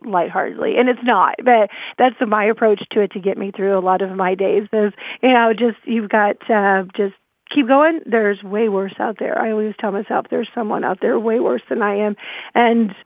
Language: English